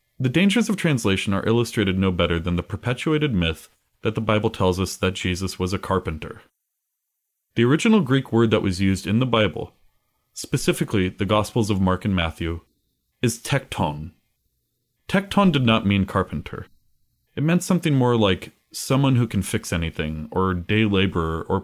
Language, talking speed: English, 165 wpm